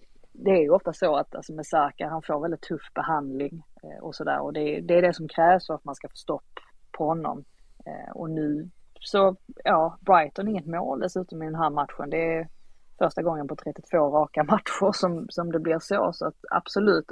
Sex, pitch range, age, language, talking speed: female, 150-180 Hz, 30-49, Swedish, 215 wpm